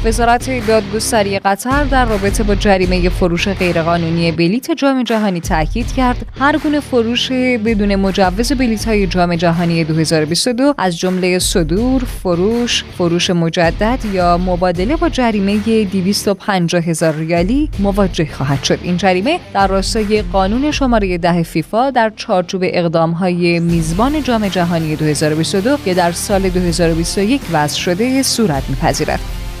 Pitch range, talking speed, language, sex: 175-235 Hz, 125 wpm, Persian, female